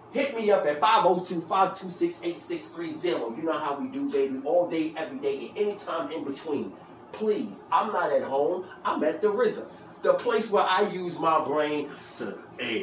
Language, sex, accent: English, male, American